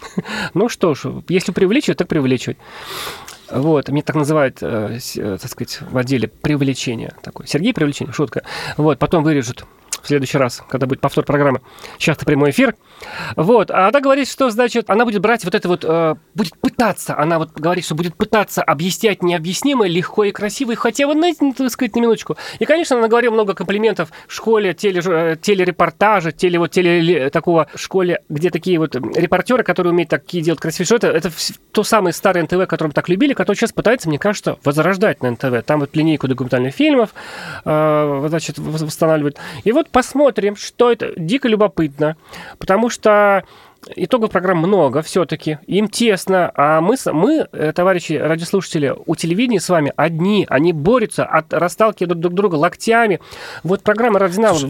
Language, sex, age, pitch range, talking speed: Russian, male, 30-49, 155-215 Hz, 165 wpm